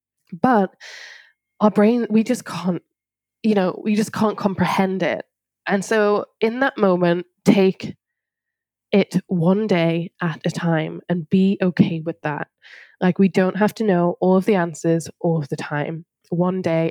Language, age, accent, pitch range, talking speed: English, 10-29, British, 175-215 Hz, 165 wpm